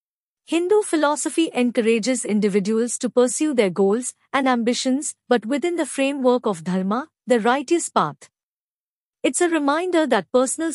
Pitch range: 205-290 Hz